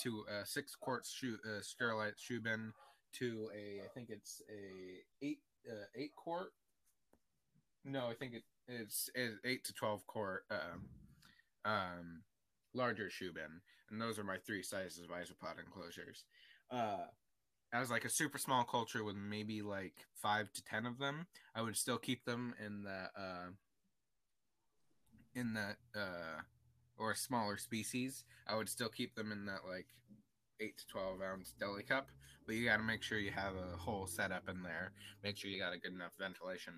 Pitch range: 95-120 Hz